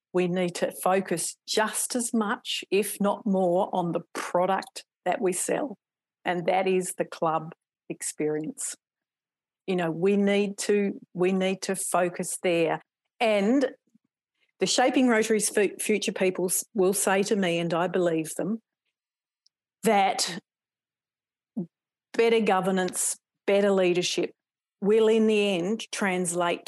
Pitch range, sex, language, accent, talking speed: 180-215 Hz, female, English, Australian, 130 wpm